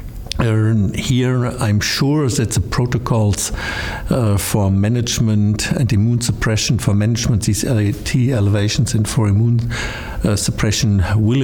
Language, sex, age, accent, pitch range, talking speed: English, male, 60-79, German, 100-120 Hz, 125 wpm